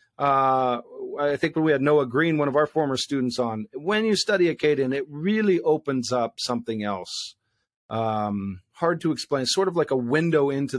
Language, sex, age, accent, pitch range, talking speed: English, male, 40-59, American, 115-145 Hz, 185 wpm